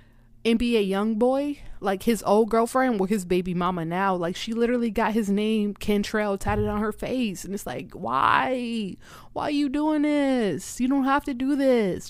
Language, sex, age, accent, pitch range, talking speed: English, female, 20-39, American, 170-230 Hz, 200 wpm